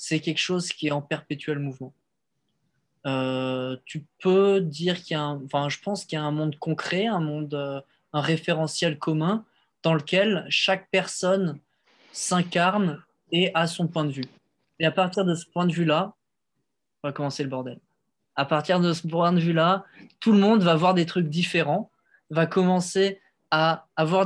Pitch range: 155-190 Hz